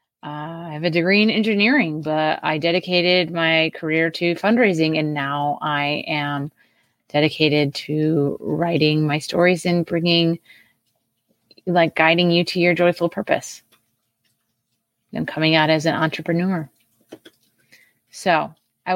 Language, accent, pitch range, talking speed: English, American, 155-200 Hz, 125 wpm